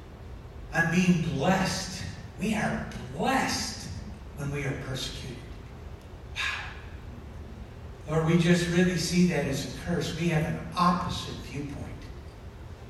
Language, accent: English, American